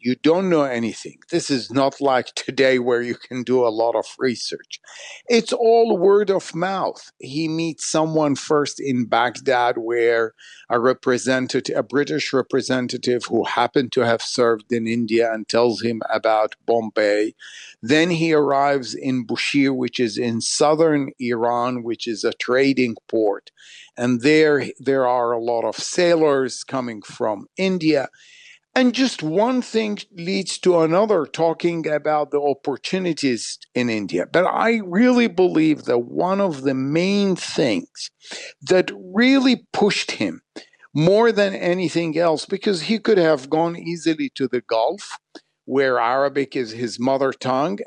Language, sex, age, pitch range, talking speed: English, male, 50-69, 125-175 Hz, 150 wpm